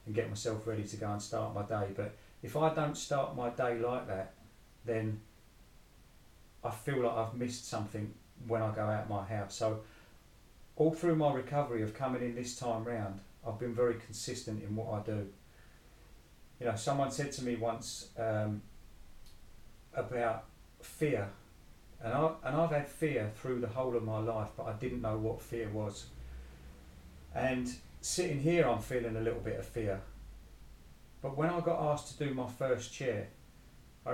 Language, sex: English, male